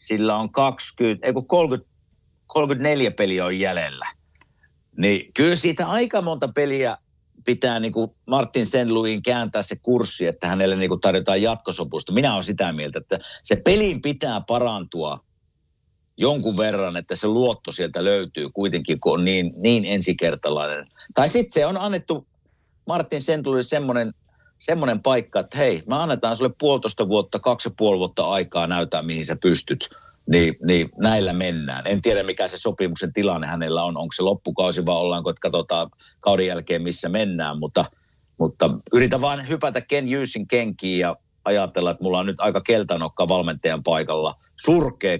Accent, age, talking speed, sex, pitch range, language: native, 50-69, 155 wpm, male, 90-130 Hz, Finnish